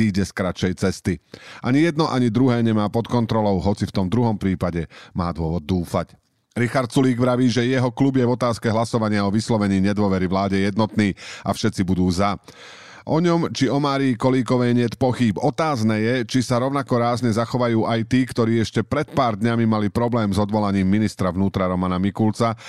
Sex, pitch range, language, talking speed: male, 100-125 Hz, Slovak, 175 wpm